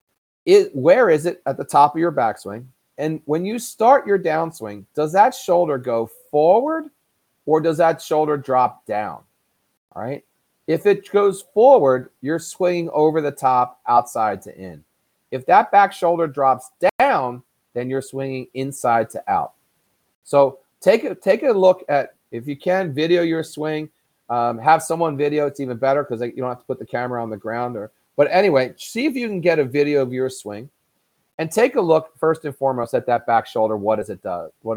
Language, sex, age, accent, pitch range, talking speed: English, male, 40-59, American, 120-170 Hz, 185 wpm